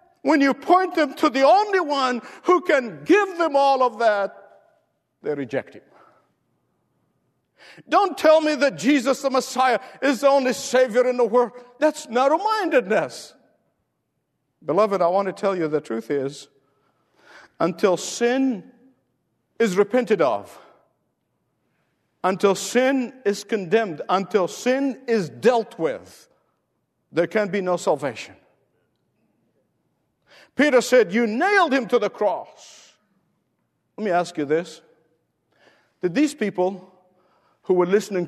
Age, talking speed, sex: 50-69, 125 wpm, male